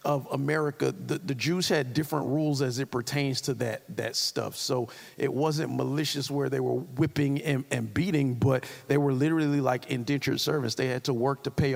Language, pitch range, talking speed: English, 135-160 Hz, 200 wpm